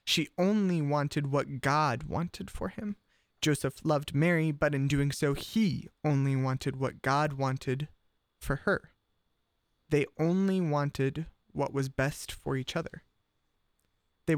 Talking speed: 140 wpm